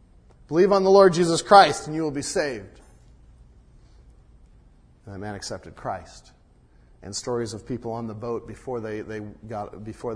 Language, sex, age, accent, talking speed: English, male, 40-59, American, 165 wpm